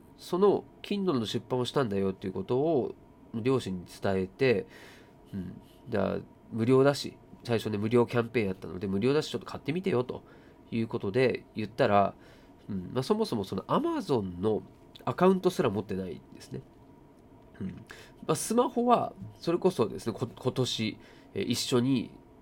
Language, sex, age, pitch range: Japanese, male, 30-49, 100-145 Hz